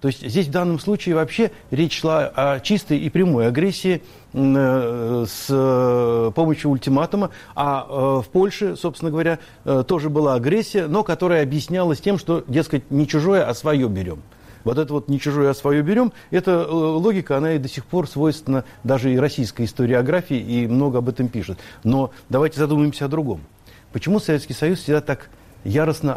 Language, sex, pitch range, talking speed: Russian, male, 125-170 Hz, 175 wpm